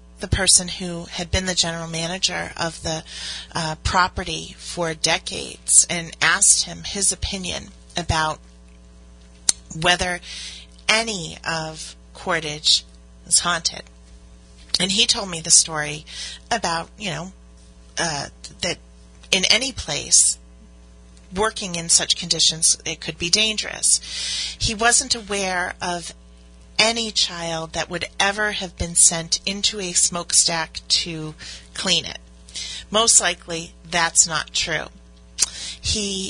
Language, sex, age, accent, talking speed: English, female, 40-59, American, 120 wpm